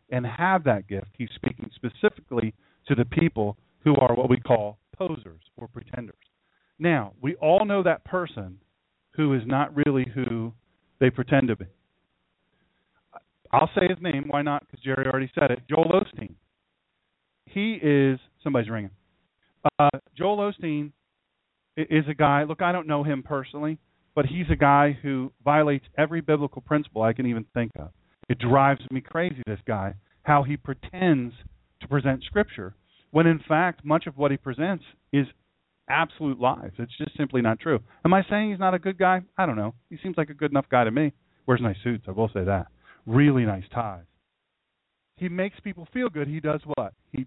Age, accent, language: 40-59, American, English